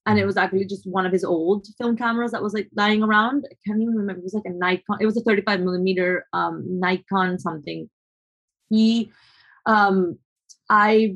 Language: English